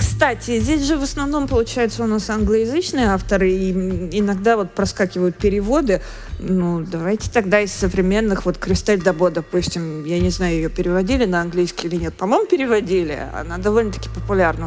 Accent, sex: native, female